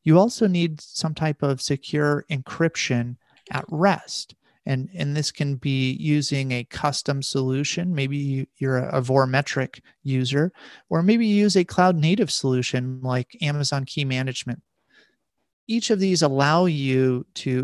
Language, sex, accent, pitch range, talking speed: English, male, American, 130-165 Hz, 145 wpm